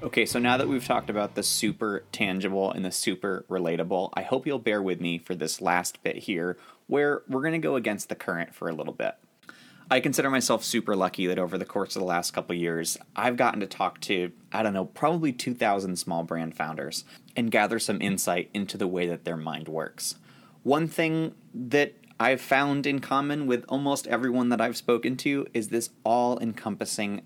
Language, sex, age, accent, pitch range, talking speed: English, male, 30-49, American, 95-135 Hz, 205 wpm